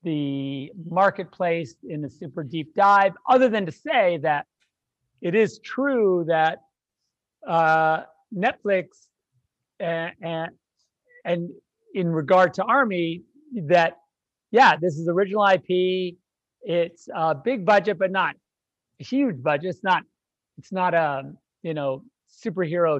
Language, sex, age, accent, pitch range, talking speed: English, male, 50-69, American, 155-190 Hz, 125 wpm